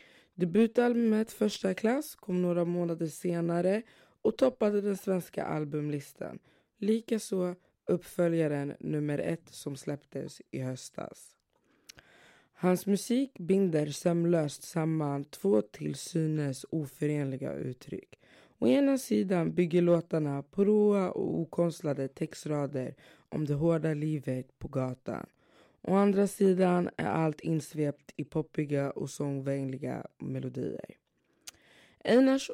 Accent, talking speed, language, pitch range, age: native, 105 wpm, Swedish, 145-180 Hz, 20-39